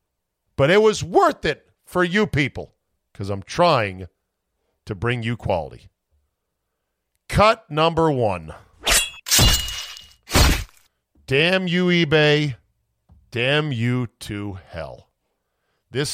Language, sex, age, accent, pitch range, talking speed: English, male, 50-69, American, 105-150 Hz, 95 wpm